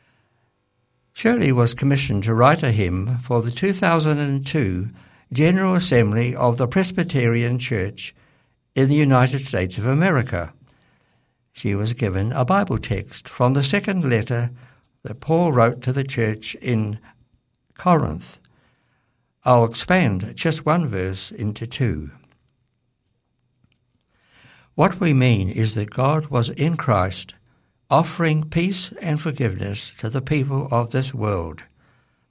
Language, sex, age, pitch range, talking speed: English, male, 60-79, 115-140 Hz, 125 wpm